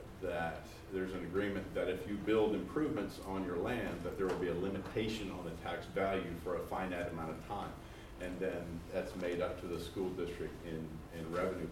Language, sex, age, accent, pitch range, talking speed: English, male, 40-59, American, 80-95 Hz, 205 wpm